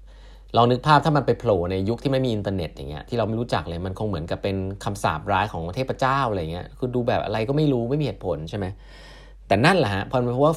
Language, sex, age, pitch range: Thai, male, 20-39, 95-130 Hz